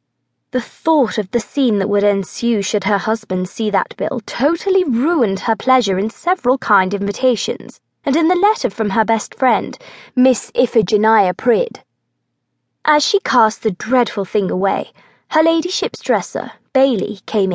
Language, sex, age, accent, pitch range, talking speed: English, female, 20-39, British, 205-280 Hz, 155 wpm